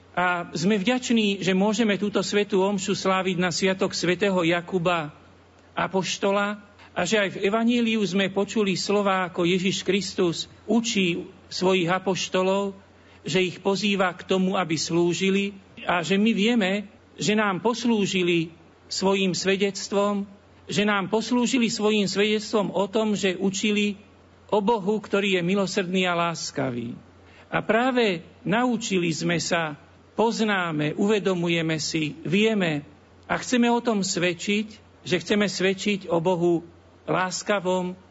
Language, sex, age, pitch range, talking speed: Slovak, male, 50-69, 175-205 Hz, 125 wpm